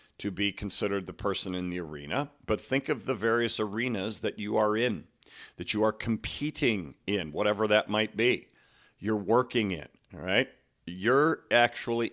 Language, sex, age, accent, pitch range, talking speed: English, male, 50-69, American, 100-125 Hz, 170 wpm